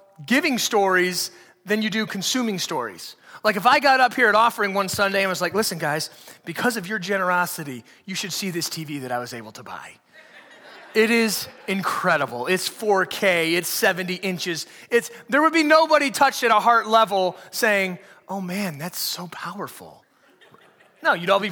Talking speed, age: 180 wpm, 30-49